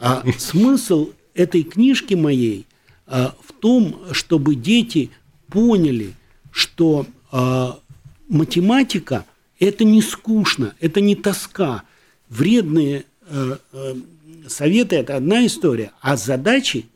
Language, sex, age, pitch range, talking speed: Russian, male, 60-79, 135-195 Hz, 100 wpm